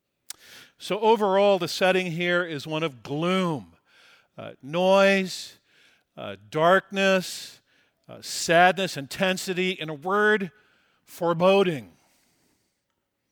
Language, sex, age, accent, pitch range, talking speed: English, male, 50-69, American, 140-185 Hz, 90 wpm